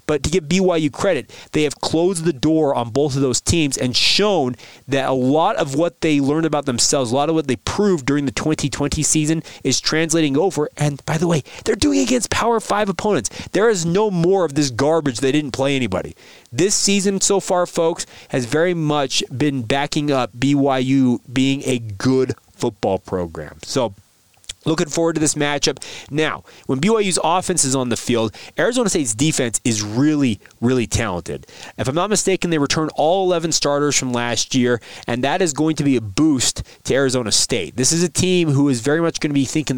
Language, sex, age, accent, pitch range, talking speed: English, male, 30-49, American, 120-155 Hz, 200 wpm